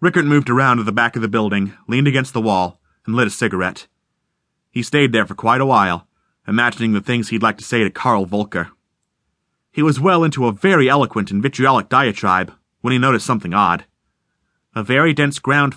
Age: 30-49